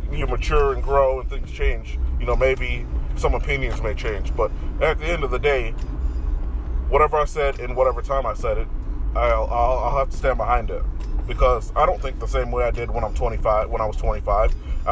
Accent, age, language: American, 20-39, English